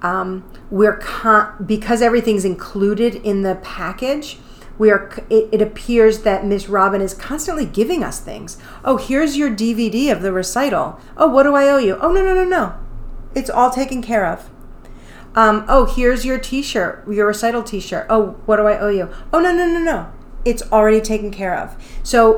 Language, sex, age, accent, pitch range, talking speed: English, female, 40-59, American, 190-230 Hz, 185 wpm